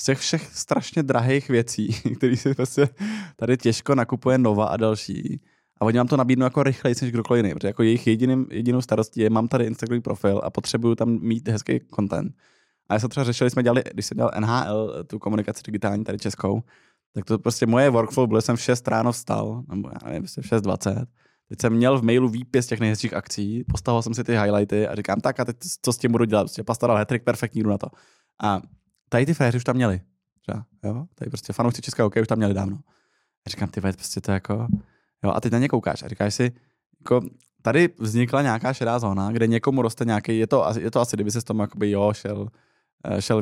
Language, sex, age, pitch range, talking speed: Czech, male, 20-39, 105-125 Hz, 215 wpm